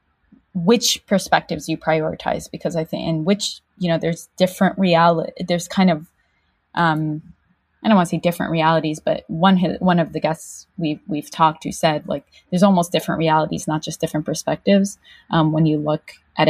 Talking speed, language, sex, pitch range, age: 180 wpm, English, female, 155-185 Hz, 20-39